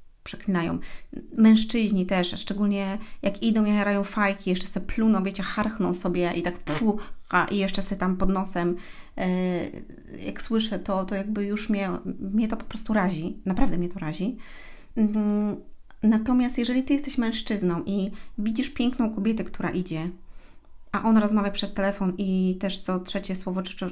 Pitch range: 185-240 Hz